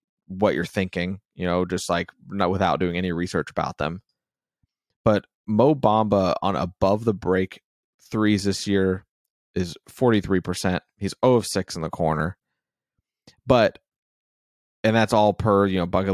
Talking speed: 160 wpm